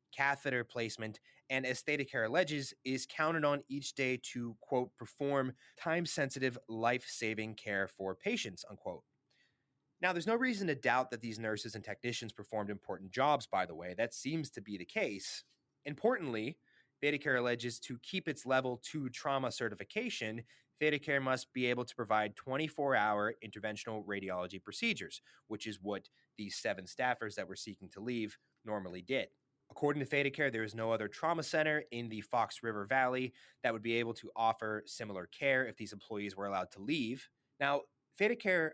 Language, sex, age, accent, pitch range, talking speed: English, male, 30-49, American, 110-140 Hz, 170 wpm